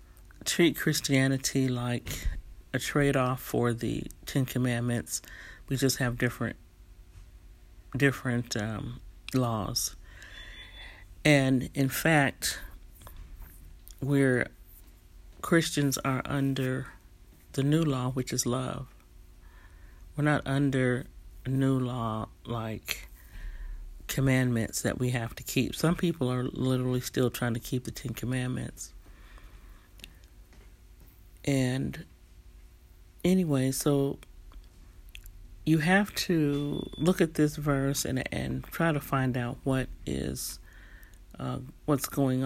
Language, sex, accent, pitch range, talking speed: English, male, American, 90-135 Hz, 105 wpm